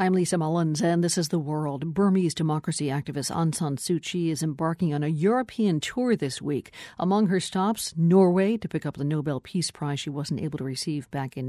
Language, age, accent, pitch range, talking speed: English, 50-69, American, 150-185 Hz, 215 wpm